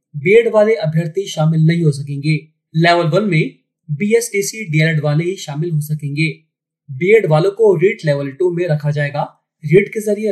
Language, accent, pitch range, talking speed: Hindi, native, 150-195 Hz, 170 wpm